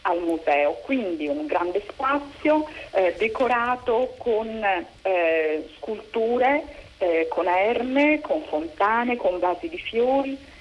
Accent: native